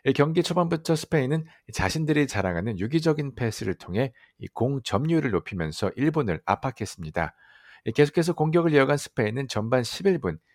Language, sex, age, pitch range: Korean, male, 60-79, 100-155 Hz